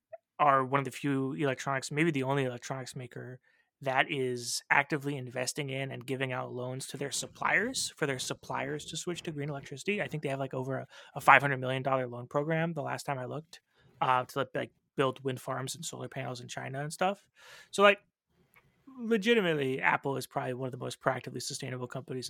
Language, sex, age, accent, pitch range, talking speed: English, male, 20-39, American, 130-175 Hz, 200 wpm